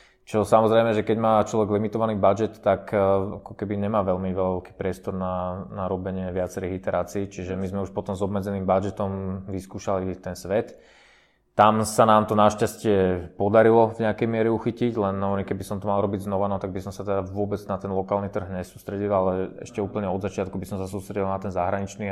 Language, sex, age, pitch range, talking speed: Slovak, male, 20-39, 95-105 Hz, 200 wpm